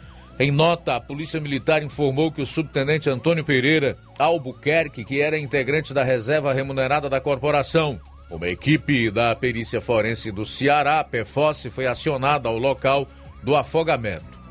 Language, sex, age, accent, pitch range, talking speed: Portuguese, male, 50-69, Brazilian, 105-145 Hz, 140 wpm